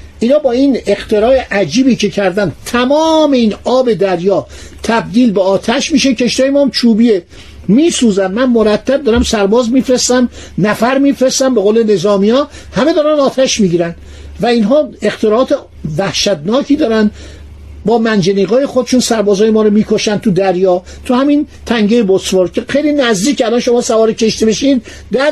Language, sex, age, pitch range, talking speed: Persian, male, 50-69, 195-255 Hz, 145 wpm